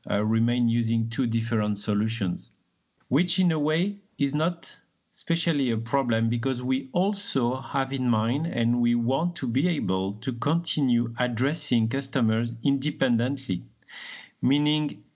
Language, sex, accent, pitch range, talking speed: English, male, French, 115-150 Hz, 130 wpm